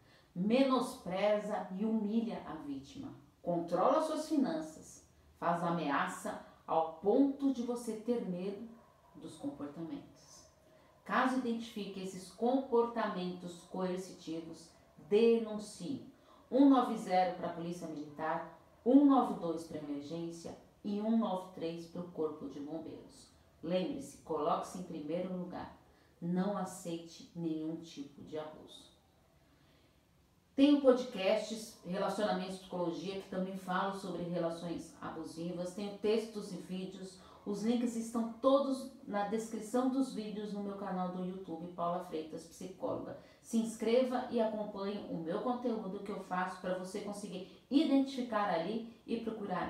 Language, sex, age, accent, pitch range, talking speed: Portuguese, female, 40-59, Brazilian, 170-230 Hz, 120 wpm